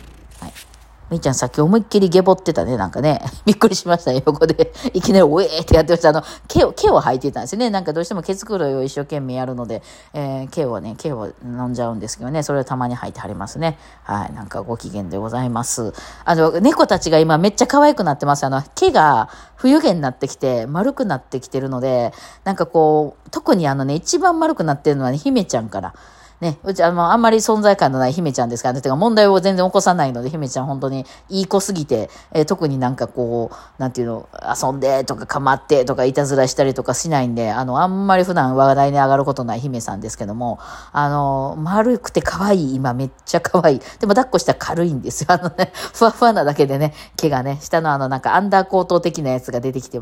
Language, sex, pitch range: Japanese, female, 130-185 Hz